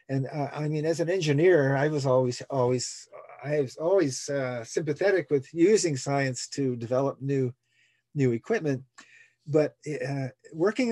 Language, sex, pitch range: English, male, 130-170 Hz